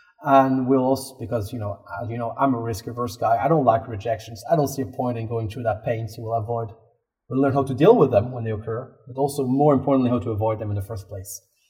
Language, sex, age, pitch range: English, male, 30-49, 115-140 Hz